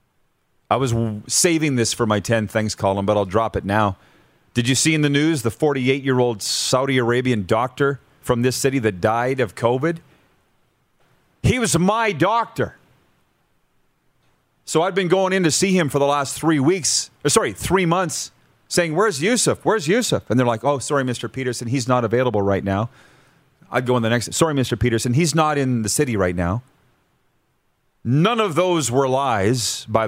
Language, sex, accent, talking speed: English, male, American, 185 wpm